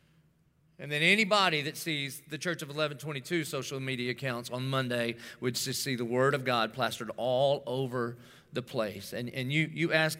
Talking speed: 180 wpm